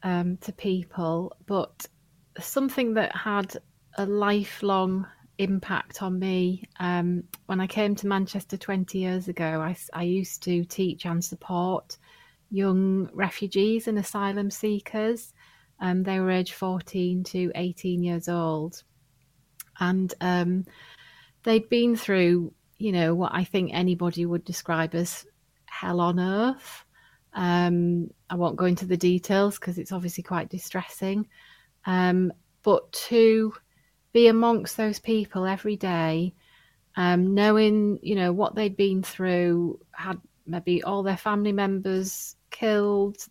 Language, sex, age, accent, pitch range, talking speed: English, female, 30-49, British, 175-200 Hz, 130 wpm